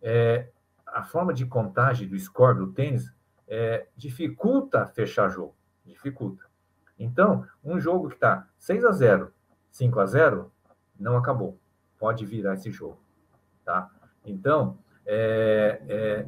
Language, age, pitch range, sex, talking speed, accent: Portuguese, 50-69, 100-130 Hz, male, 115 wpm, Brazilian